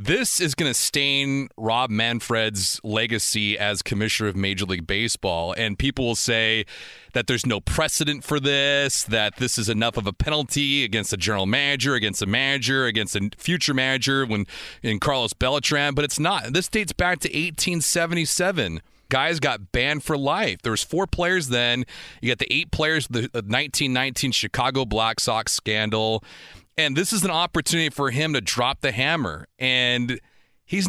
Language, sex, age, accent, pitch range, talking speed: English, male, 30-49, American, 115-165 Hz, 175 wpm